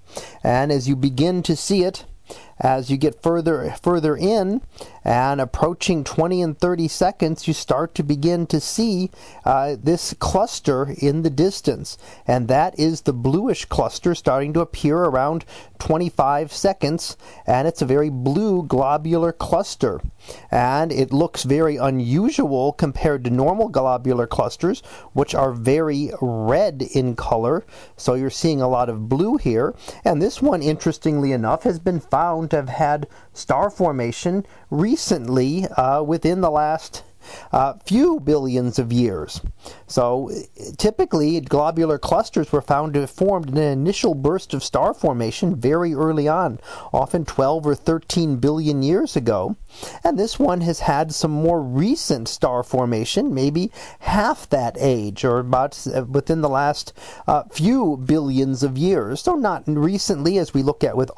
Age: 40-59